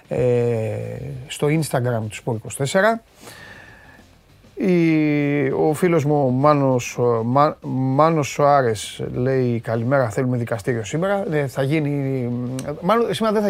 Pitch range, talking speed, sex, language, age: 120-170 Hz, 115 wpm, male, Greek, 30-49